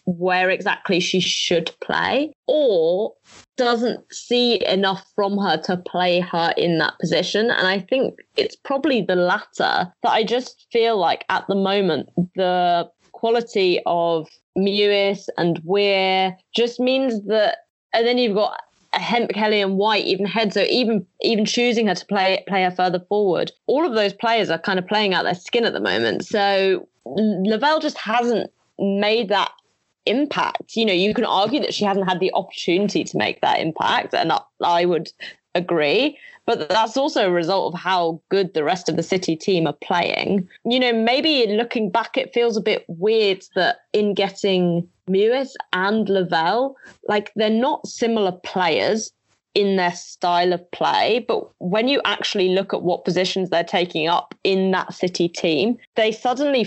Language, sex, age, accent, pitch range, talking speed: English, female, 20-39, British, 180-235 Hz, 175 wpm